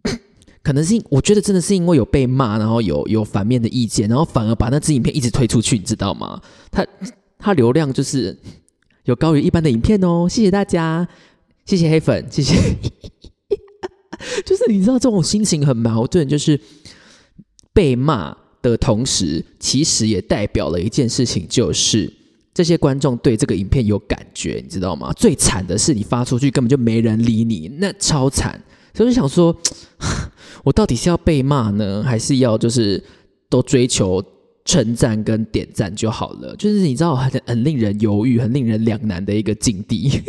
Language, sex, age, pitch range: Chinese, male, 20-39, 115-175 Hz